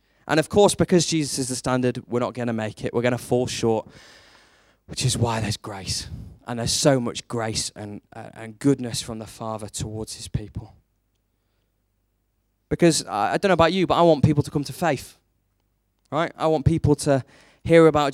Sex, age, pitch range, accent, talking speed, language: male, 20-39, 110-150 Hz, British, 200 wpm, English